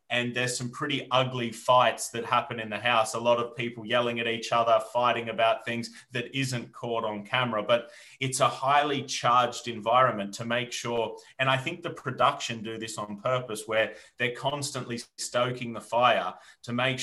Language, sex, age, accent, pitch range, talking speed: English, male, 30-49, Australian, 115-130 Hz, 185 wpm